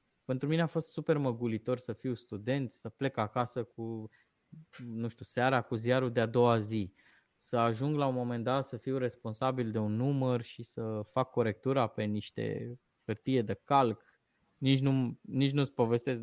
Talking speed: 170 wpm